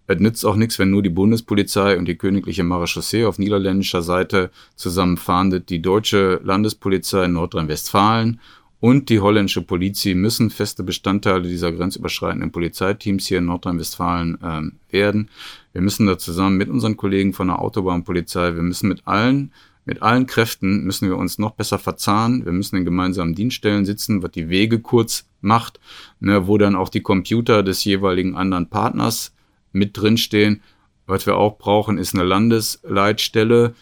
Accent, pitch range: German, 90-105 Hz